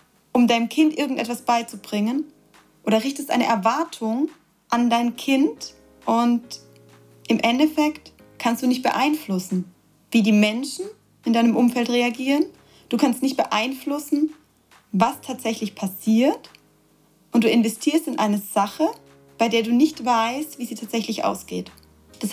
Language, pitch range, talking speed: German, 225-280 Hz, 130 wpm